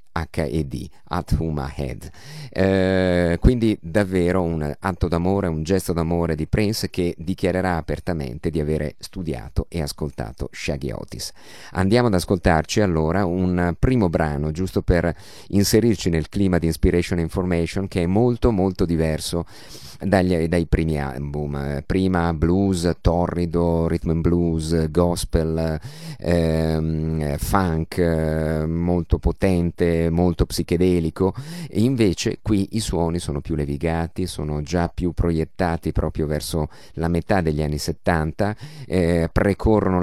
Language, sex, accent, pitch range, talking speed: Italian, male, native, 80-95 Hz, 120 wpm